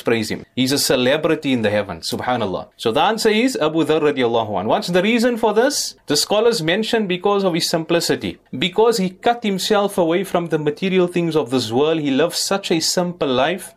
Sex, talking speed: male, 205 wpm